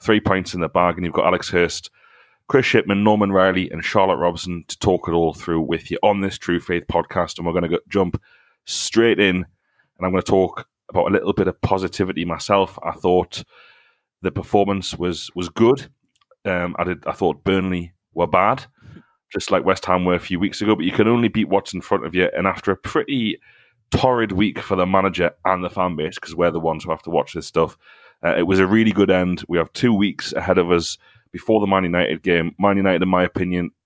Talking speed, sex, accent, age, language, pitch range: 225 wpm, male, British, 30-49, English, 85-100 Hz